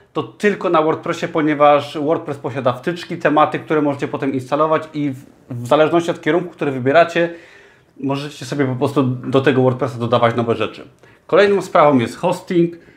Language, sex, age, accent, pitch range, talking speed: Polish, male, 30-49, native, 130-160 Hz, 160 wpm